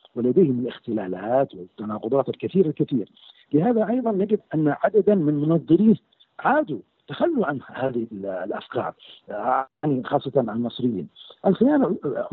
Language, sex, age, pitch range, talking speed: Arabic, male, 50-69, 120-165 Hz, 105 wpm